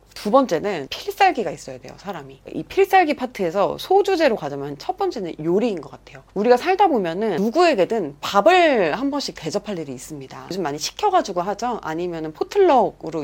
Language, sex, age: Korean, female, 30-49